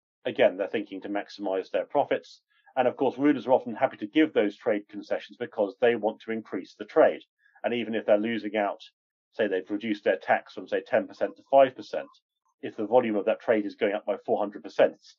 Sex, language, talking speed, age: male, English, 210 wpm, 40-59